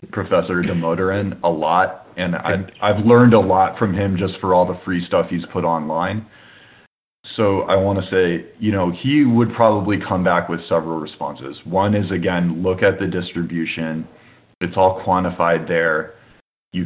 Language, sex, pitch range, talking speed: English, male, 90-115 Hz, 170 wpm